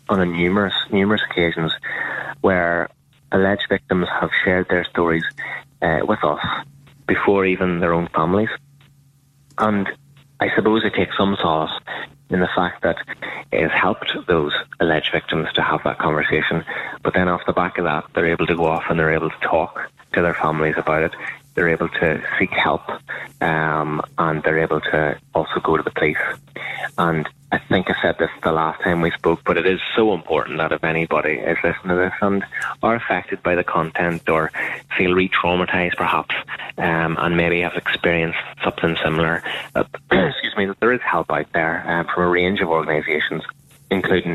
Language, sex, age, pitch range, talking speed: English, male, 30-49, 80-95 Hz, 180 wpm